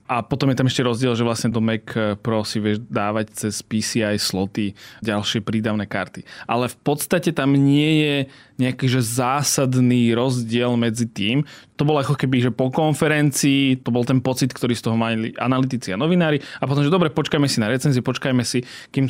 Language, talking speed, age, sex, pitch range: Slovak, 190 wpm, 20-39, male, 120-140 Hz